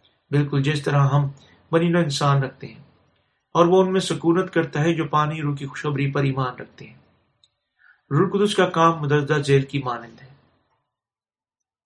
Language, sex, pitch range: Urdu, male, 135-165 Hz